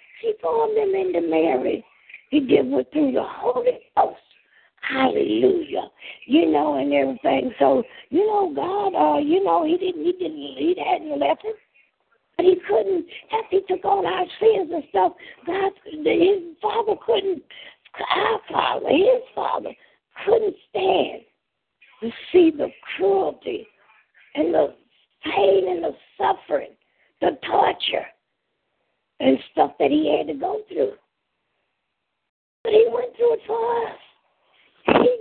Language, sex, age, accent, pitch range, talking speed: English, female, 60-79, American, 315-430 Hz, 140 wpm